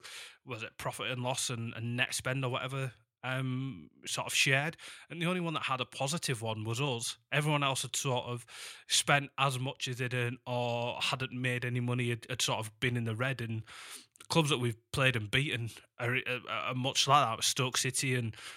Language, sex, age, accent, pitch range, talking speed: English, male, 20-39, British, 115-135 Hz, 215 wpm